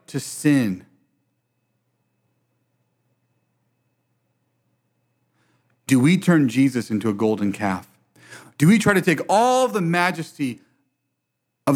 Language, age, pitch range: English, 40-59, 105-145 Hz